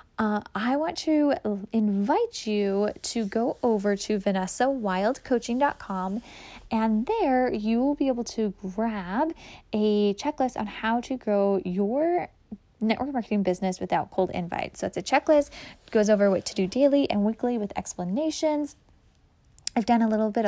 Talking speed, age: 150 wpm, 10-29